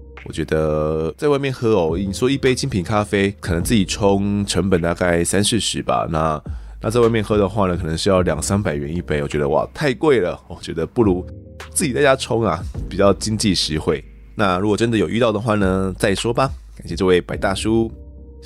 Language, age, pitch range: Chinese, 20-39, 85-115 Hz